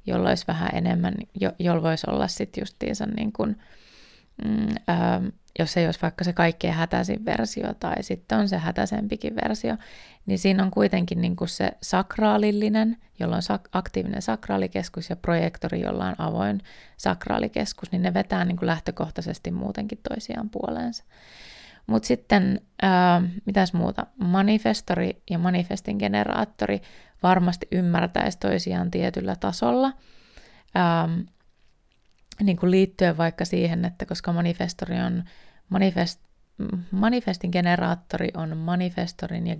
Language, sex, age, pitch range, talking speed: Finnish, female, 20-39, 170-190 Hz, 125 wpm